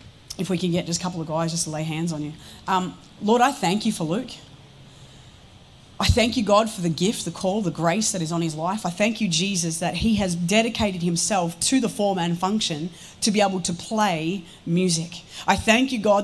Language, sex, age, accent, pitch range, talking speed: English, female, 30-49, Australian, 175-230 Hz, 230 wpm